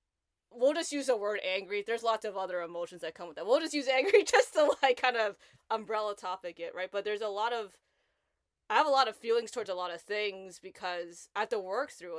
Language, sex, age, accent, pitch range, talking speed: English, female, 20-39, American, 195-270 Hz, 245 wpm